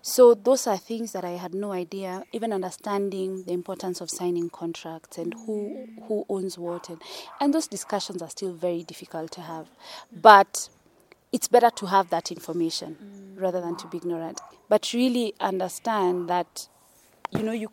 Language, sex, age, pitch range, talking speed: English, female, 20-39, 180-220 Hz, 170 wpm